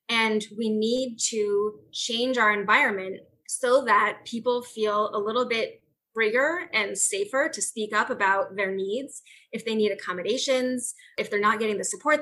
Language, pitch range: English, 215-275 Hz